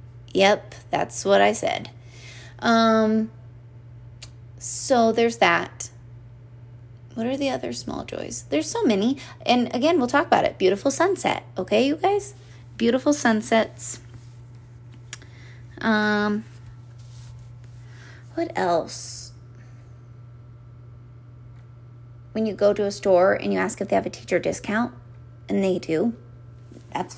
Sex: female